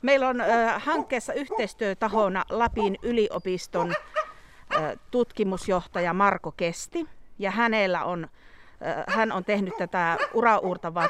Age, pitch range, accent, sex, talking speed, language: 40-59, 190-245 Hz, native, female, 90 wpm, Finnish